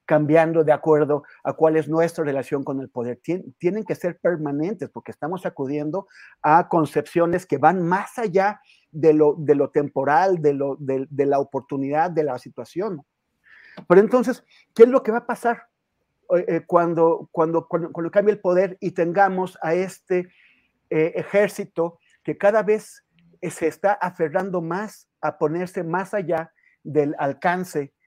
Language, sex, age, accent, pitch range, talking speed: Spanish, male, 40-59, Mexican, 150-195 Hz, 145 wpm